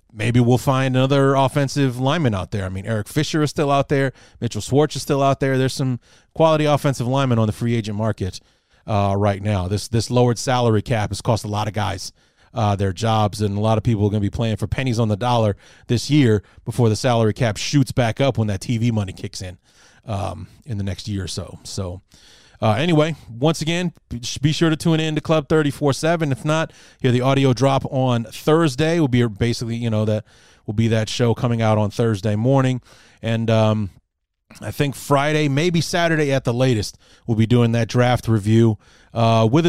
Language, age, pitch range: English, 30-49, 105-135 Hz